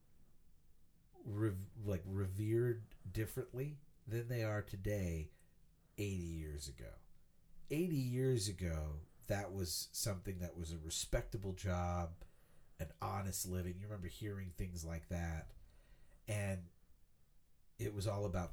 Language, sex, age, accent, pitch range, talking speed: English, male, 50-69, American, 90-110 Hz, 115 wpm